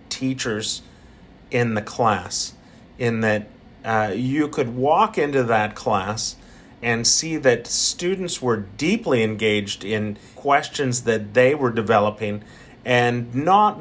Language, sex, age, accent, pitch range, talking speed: English, male, 40-59, American, 115-135 Hz, 120 wpm